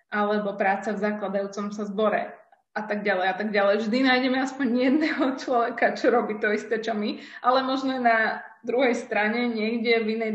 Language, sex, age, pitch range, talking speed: Slovak, female, 20-39, 210-245 Hz, 180 wpm